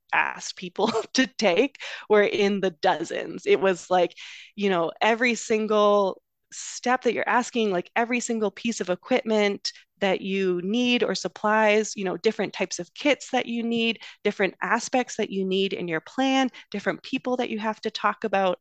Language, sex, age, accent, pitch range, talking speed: English, female, 20-39, American, 180-230 Hz, 175 wpm